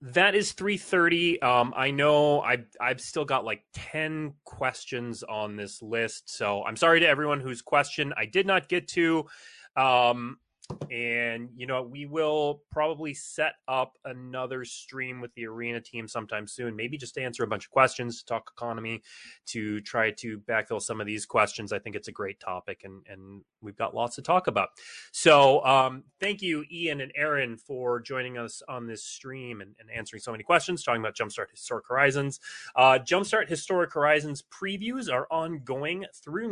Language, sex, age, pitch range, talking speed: English, male, 20-39, 115-160 Hz, 175 wpm